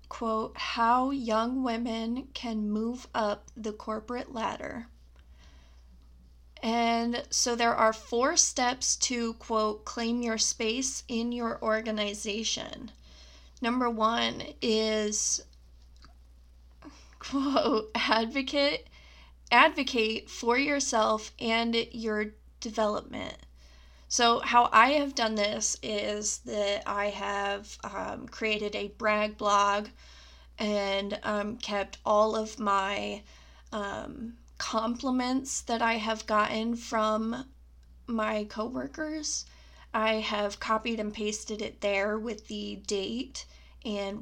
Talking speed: 105 wpm